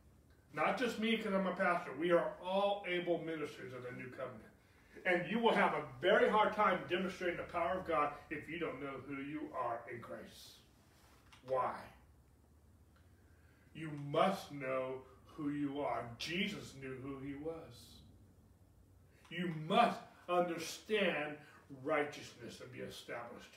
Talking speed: 145 wpm